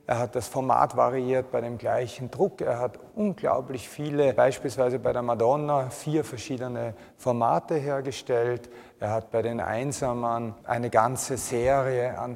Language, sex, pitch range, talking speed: German, male, 115-140 Hz, 145 wpm